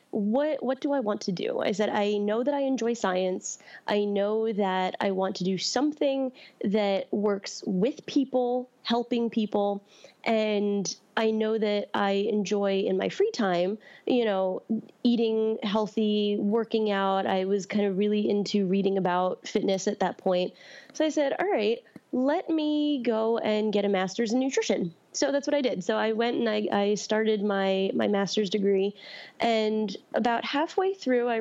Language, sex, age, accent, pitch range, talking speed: English, female, 20-39, American, 195-245 Hz, 175 wpm